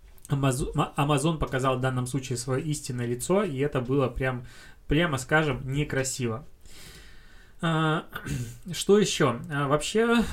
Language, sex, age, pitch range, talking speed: Russian, male, 20-39, 130-155 Hz, 105 wpm